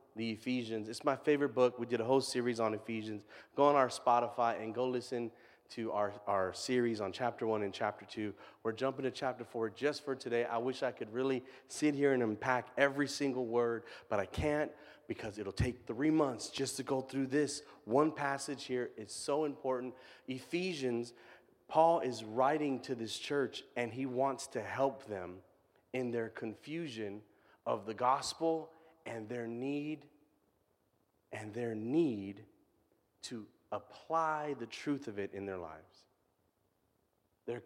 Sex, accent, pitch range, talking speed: male, American, 115-145 Hz, 165 wpm